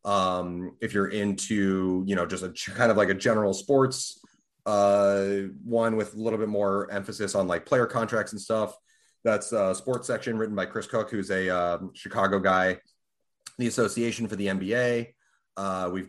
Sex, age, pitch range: male, 30-49, 95-110 Hz